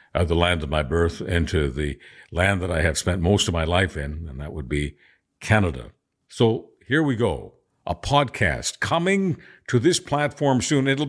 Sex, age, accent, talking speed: male, 50-69, American, 185 wpm